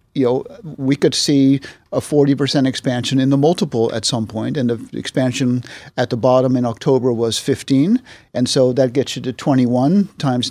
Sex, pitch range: male, 125-145 Hz